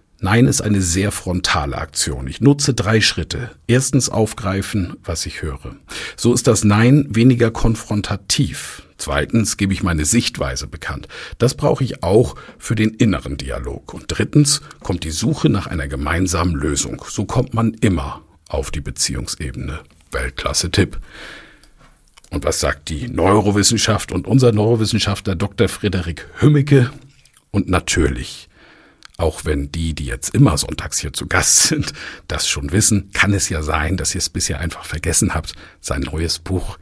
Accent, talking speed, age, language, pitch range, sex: German, 150 wpm, 50-69, German, 80-115 Hz, male